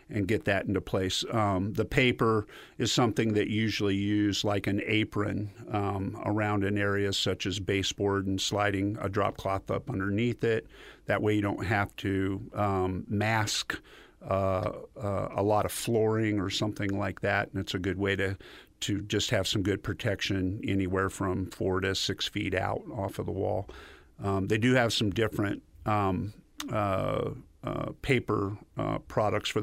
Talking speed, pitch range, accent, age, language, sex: 175 wpm, 100-110 Hz, American, 50-69, English, male